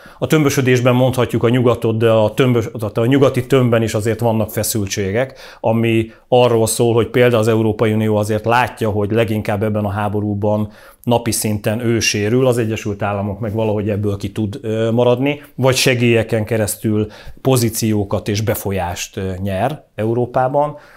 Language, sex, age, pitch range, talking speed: Hungarian, male, 30-49, 105-120 Hz, 140 wpm